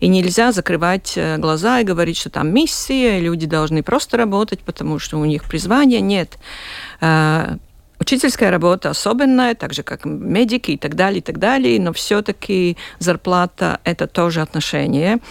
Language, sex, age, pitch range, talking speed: Russian, female, 50-69, 165-205 Hz, 155 wpm